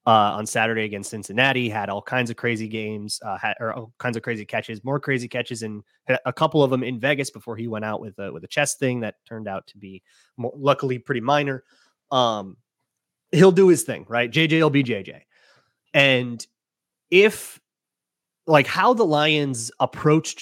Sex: male